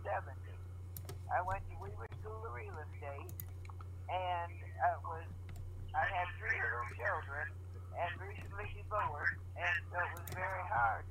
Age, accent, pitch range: 60-79, American, 90-95 Hz